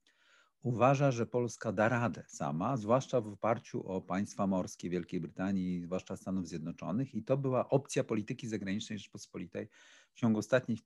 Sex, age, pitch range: male, 50-69, 105-140 Hz